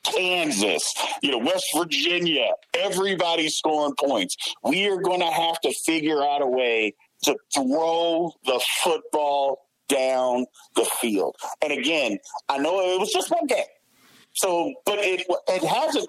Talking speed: 140 wpm